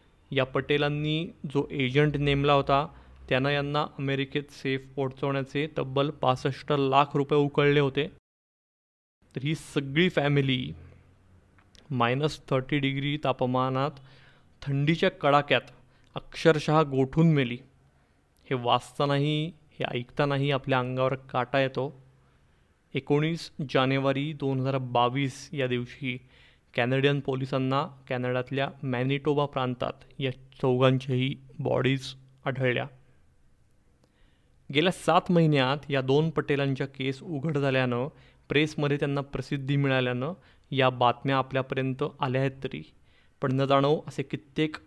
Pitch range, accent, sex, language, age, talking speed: 130-145 Hz, native, male, Marathi, 30-49, 100 wpm